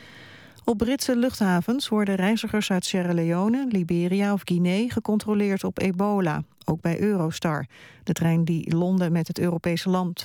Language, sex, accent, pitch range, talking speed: Dutch, female, Dutch, 165-200 Hz, 145 wpm